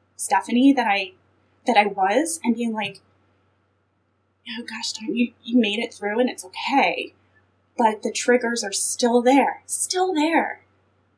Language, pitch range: English, 205-275 Hz